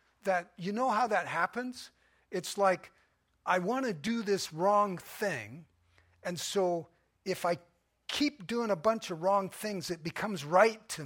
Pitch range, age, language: 155-220 Hz, 50-69, English